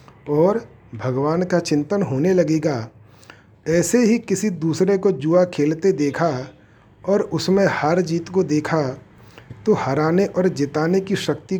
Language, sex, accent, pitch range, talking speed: Hindi, male, native, 130-180 Hz, 135 wpm